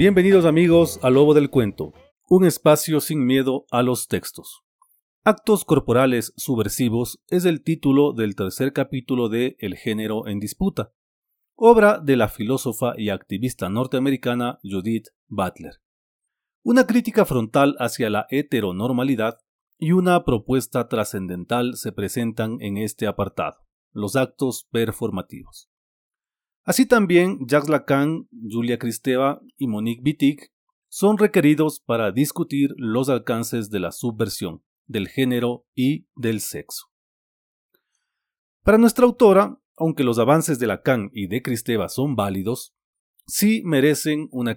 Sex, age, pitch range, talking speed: male, 40-59, 115-160 Hz, 125 wpm